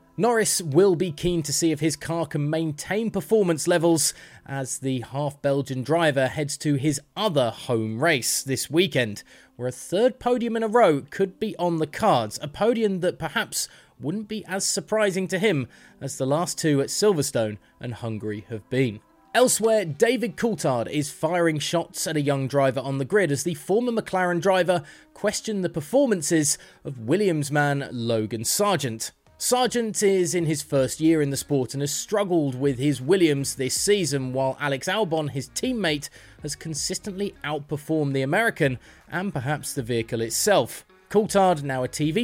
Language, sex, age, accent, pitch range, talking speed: English, male, 20-39, British, 135-185 Hz, 170 wpm